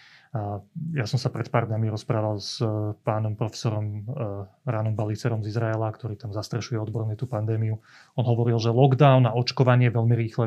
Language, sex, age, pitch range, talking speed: Slovak, male, 30-49, 115-140 Hz, 160 wpm